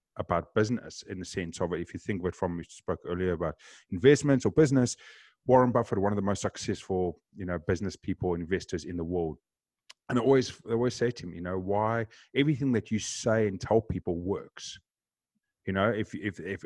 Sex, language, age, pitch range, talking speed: male, English, 30-49, 95-120 Hz, 205 wpm